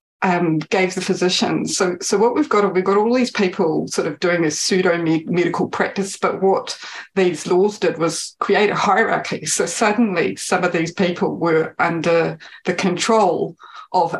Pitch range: 165-195 Hz